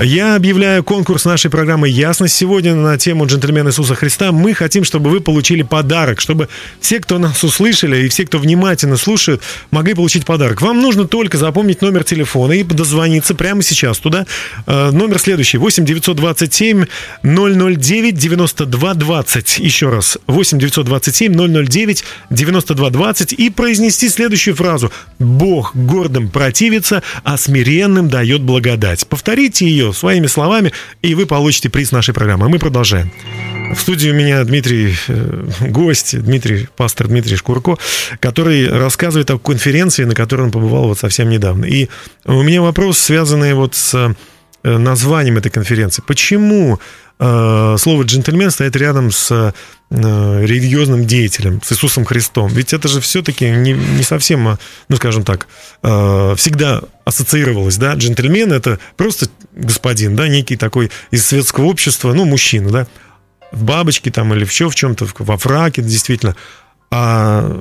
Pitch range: 120-170 Hz